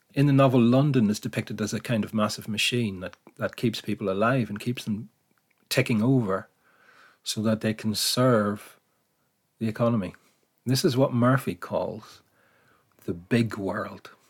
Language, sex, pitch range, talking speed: English, male, 100-120 Hz, 155 wpm